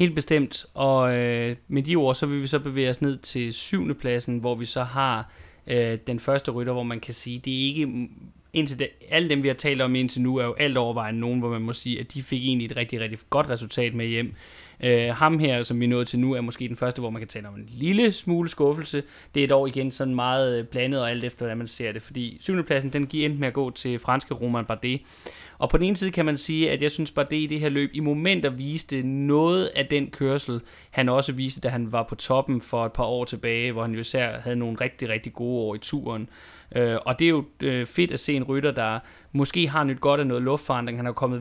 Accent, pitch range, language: native, 120-140 Hz, Danish